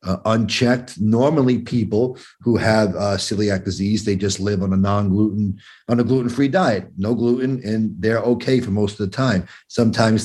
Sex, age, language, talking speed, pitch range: male, 40-59, English, 175 wpm, 100-120 Hz